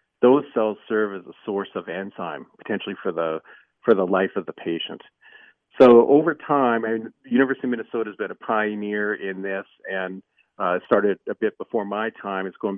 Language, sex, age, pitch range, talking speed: English, male, 50-69, 95-125 Hz, 190 wpm